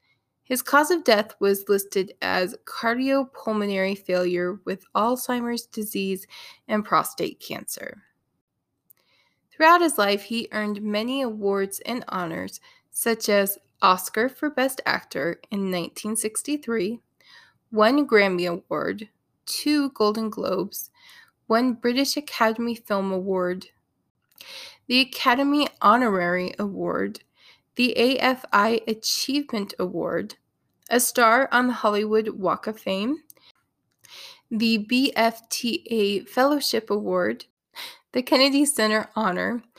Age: 20-39